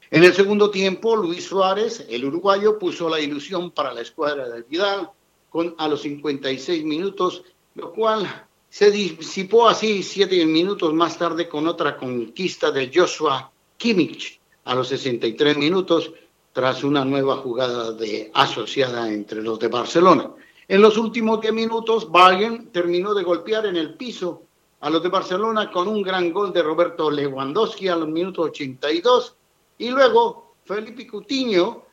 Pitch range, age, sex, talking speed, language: 150-205 Hz, 50-69, male, 150 wpm, Spanish